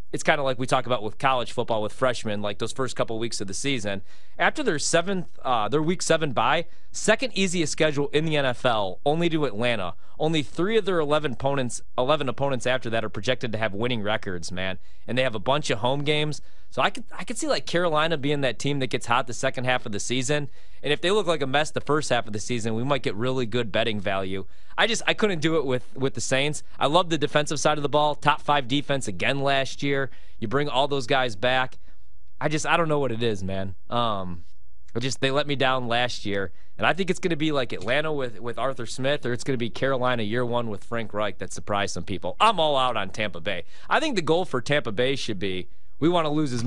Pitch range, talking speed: 110-145 Hz, 255 wpm